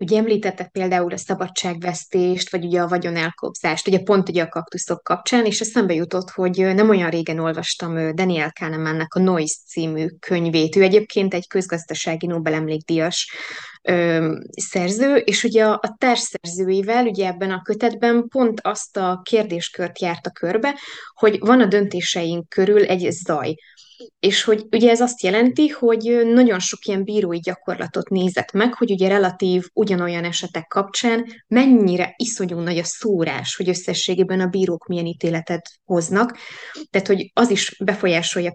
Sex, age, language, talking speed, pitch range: female, 20-39, Hungarian, 145 wpm, 175-215 Hz